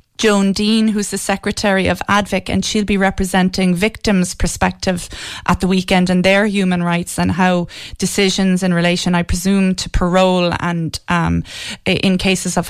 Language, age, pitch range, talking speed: English, 30-49, 180-205 Hz, 160 wpm